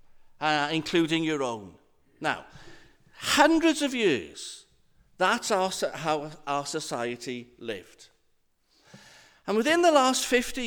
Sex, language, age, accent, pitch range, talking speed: male, English, 50-69, British, 175-275 Hz, 105 wpm